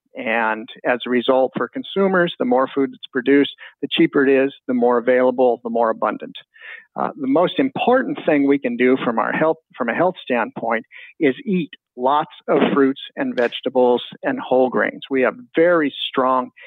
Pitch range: 125-160 Hz